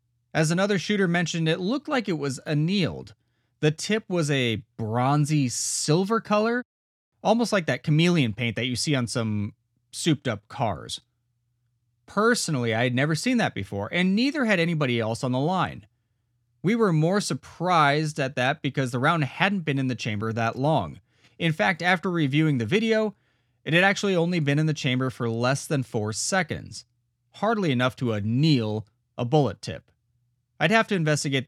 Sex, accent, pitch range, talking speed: male, American, 120-170 Hz, 175 wpm